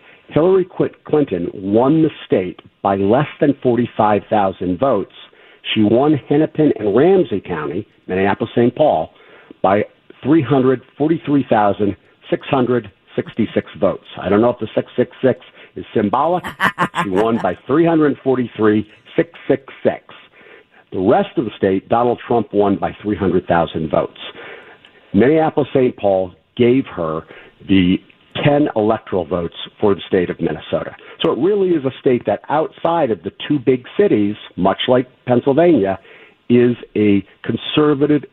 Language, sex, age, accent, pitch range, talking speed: English, male, 50-69, American, 100-145 Hz, 120 wpm